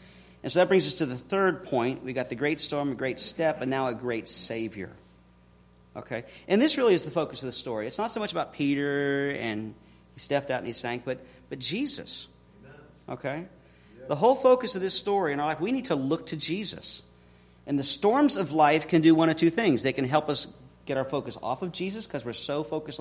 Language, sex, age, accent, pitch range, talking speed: English, male, 40-59, American, 125-180 Hz, 230 wpm